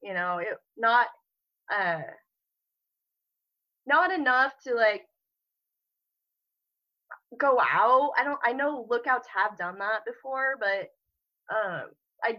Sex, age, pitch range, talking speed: female, 20-39, 195-255 Hz, 110 wpm